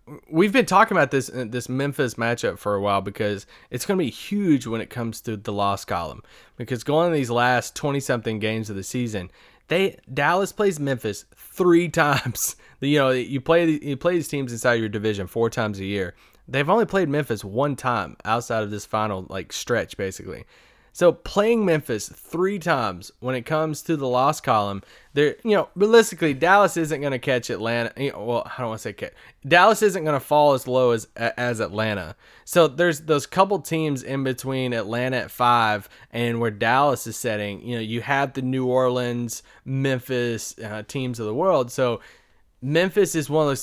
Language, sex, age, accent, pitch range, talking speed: English, male, 20-39, American, 115-160 Hz, 195 wpm